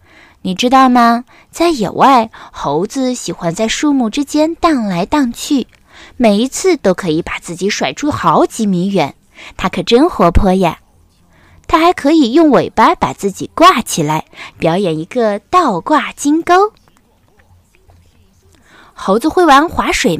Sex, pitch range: female, 180-285 Hz